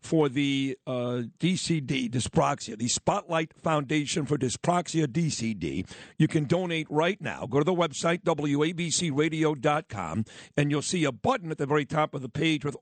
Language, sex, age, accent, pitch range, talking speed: English, male, 50-69, American, 140-165 Hz, 160 wpm